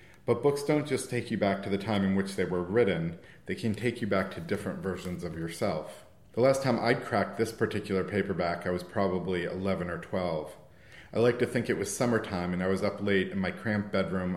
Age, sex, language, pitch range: 40-59, male, English, 90-110 Hz